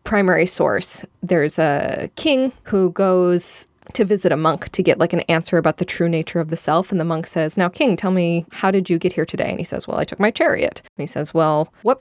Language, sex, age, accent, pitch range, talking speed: English, female, 20-39, American, 165-195 Hz, 250 wpm